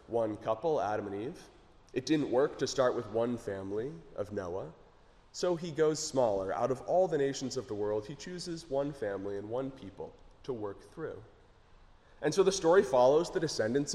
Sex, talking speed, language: male, 190 wpm, English